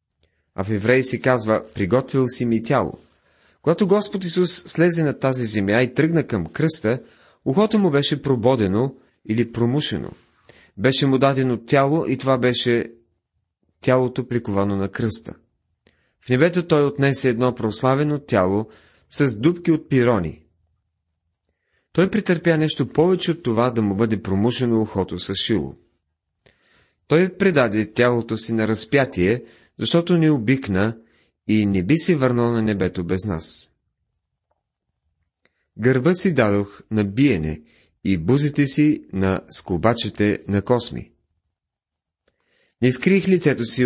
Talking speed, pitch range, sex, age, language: 130 wpm, 100-140 Hz, male, 30-49, Bulgarian